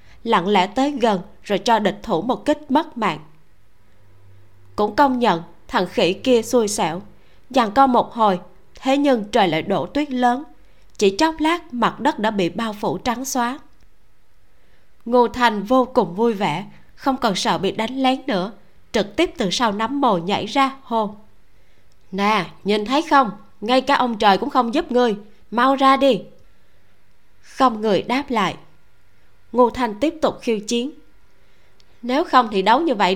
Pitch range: 185-255 Hz